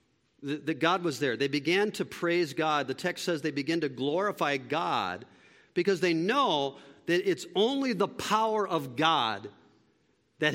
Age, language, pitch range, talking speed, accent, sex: 50-69, English, 150-215 Hz, 160 wpm, American, male